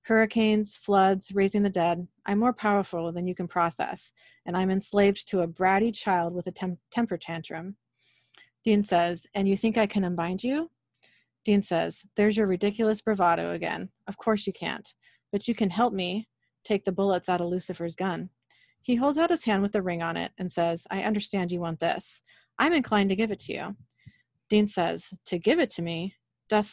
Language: English